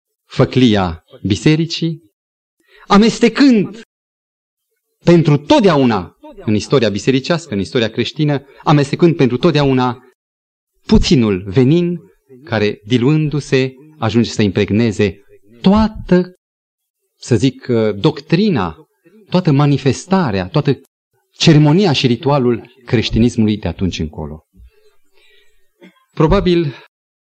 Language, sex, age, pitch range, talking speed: Romanian, male, 30-49, 120-180 Hz, 80 wpm